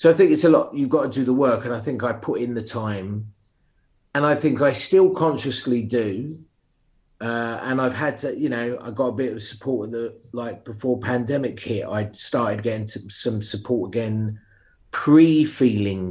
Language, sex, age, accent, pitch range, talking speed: English, male, 40-59, British, 105-125 Hz, 195 wpm